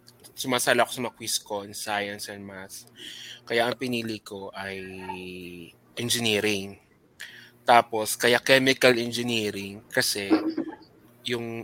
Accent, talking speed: native, 100 wpm